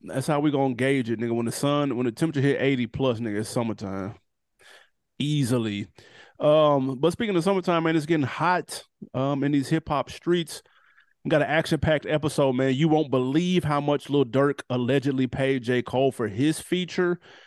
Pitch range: 125-155 Hz